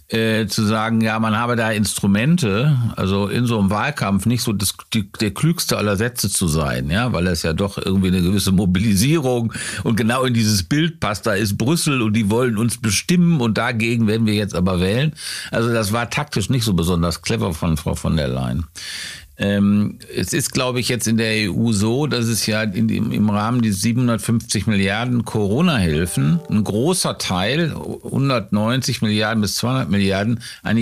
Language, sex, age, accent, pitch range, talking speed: German, male, 50-69, German, 105-125 Hz, 180 wpm